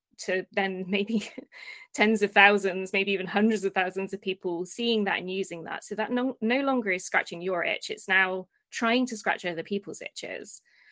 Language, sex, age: English, female, 20-39